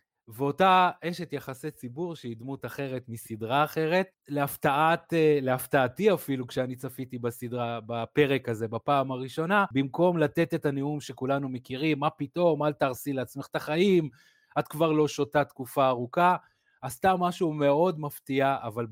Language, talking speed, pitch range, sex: Hebrew, 140 wpm, 125-155 Hz, male